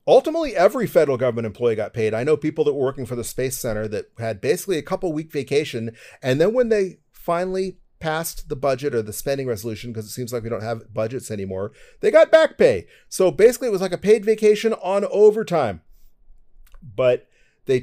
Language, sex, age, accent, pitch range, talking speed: English, male, 40-59, American, 120-160 Hz, 205 wpm